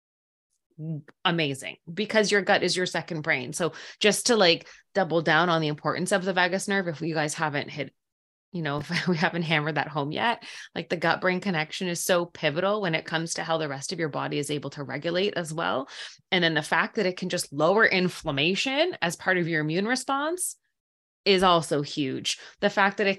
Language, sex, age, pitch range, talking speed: English, female, 20-39, 165-210 Hz, 210 wpm